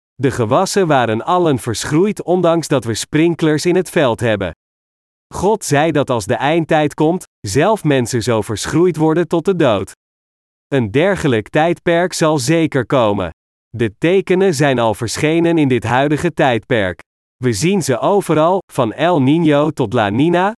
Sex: male